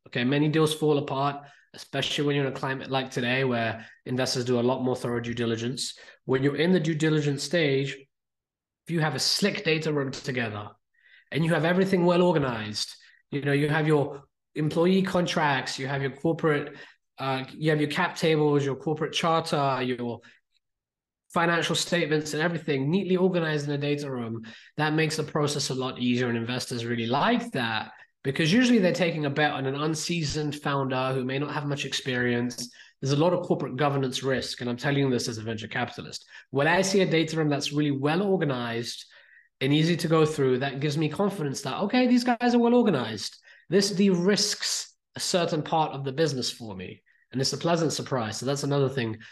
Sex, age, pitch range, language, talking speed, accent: male, 20-39, 125-160 Hz, English, 200 wpm, British